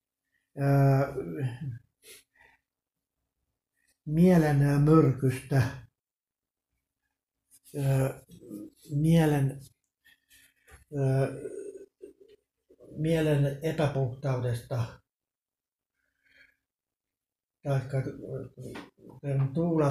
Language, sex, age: Finnish, male, 60-79